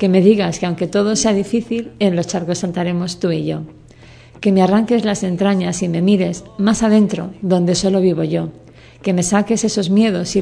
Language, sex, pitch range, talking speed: Spanish, female, 175-210 Hz, 200 wpm